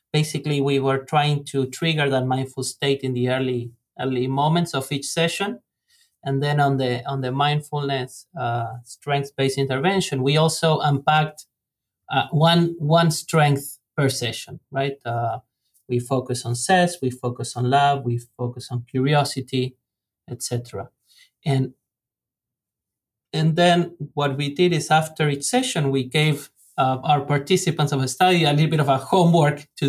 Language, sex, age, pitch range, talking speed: English, male, 30-49, 130-150 Hz, 155 wpm